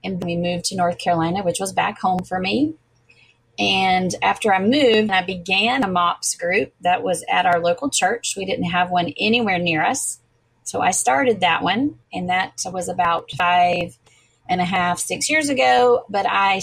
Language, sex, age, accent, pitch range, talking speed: English, female, 30-49, American, 175-215 Hz, 190 wpm